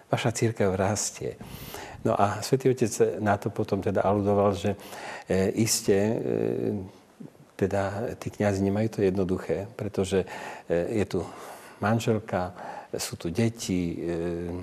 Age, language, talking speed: 40-59, Slovak, 105 wpm